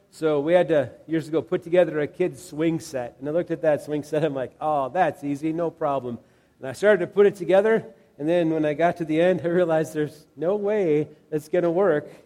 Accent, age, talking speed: American, 40-59, 245 wpm